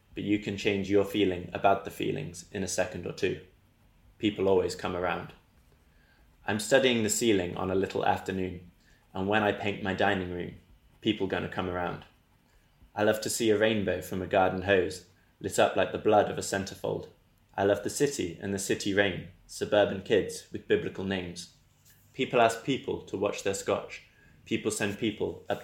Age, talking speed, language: 20-39, 185 wpm, English